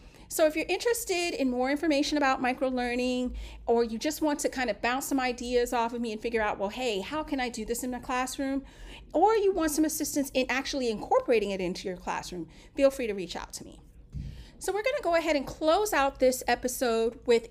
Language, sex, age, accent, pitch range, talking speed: English, female, 40-59, American, 220-300 Hz, 225 wpm